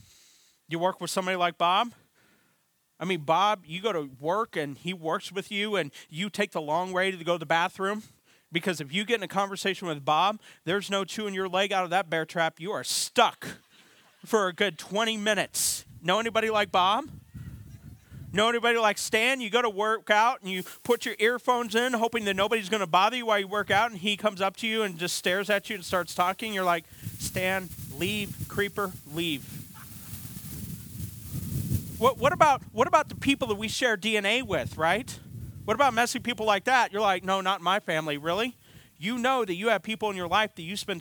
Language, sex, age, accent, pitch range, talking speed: English, male, 40-59, American, 175-215 Hz, 210 wpm